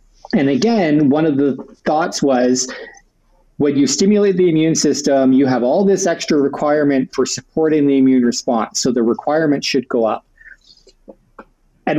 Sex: male